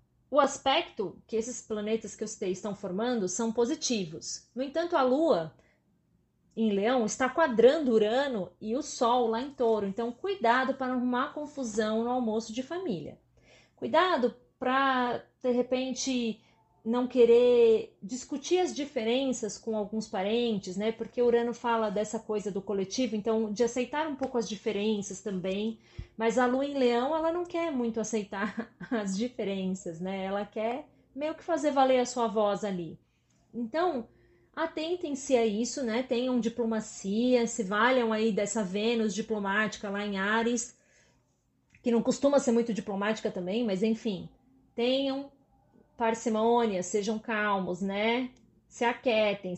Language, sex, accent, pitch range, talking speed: Portuguese, female, Brazilian, 210-250 Hz, 145 wpm